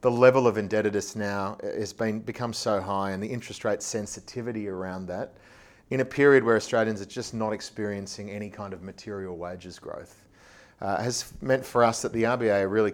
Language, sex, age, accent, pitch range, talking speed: English, male, 30-49, Australian, 100-115 Hz, 195 wpm